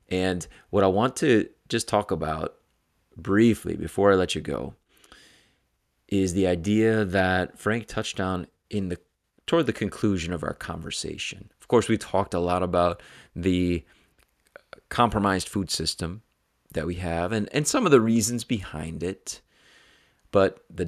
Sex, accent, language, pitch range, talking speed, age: male, American, English, 90-105 Hz, 150 wpm, 30-49